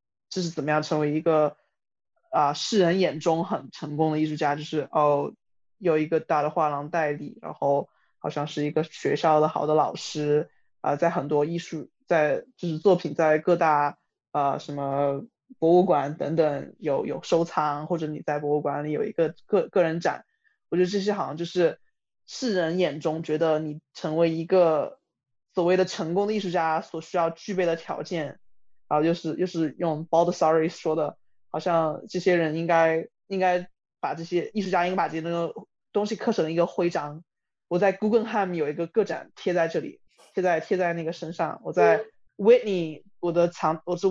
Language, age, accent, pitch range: Chinese, 20-39, native, 155-185 Hz